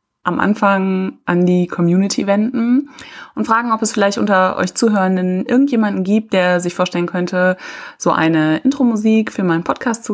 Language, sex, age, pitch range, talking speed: German, female, 20-39, 175-220 Hz, 160 wpm